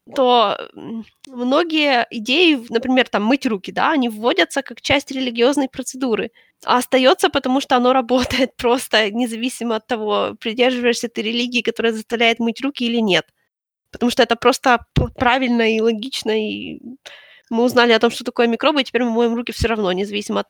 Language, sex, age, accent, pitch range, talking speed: Ukrainian, female, 20-39, native, 220-260 Hz, 165 wpm